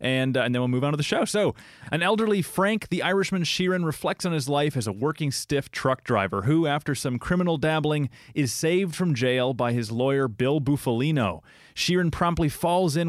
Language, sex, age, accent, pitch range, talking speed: English, male, 30-49, American, 120-160 Hz, 205 wpm